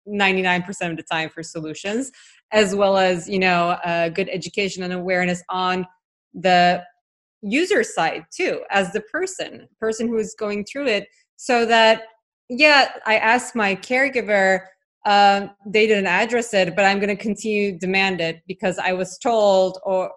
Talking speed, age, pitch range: 165 wpm, 20-39, 185-225 Hz